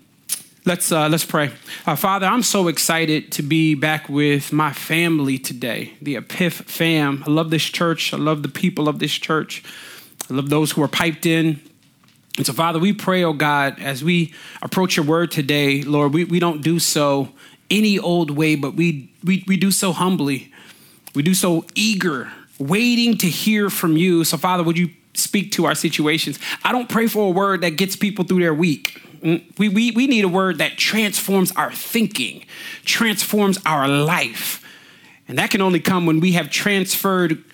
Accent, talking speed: American, 185 wpm